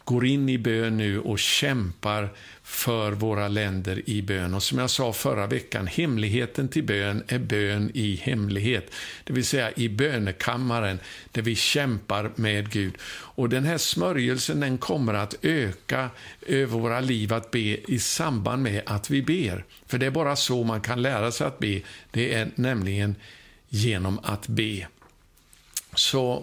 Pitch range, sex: 105-130 Hz, male